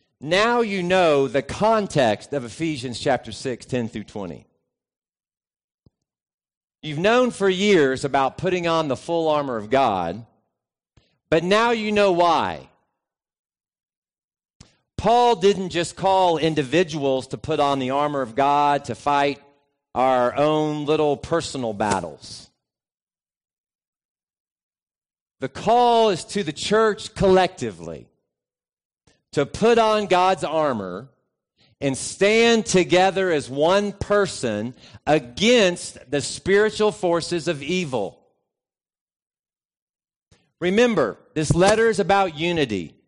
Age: 40-59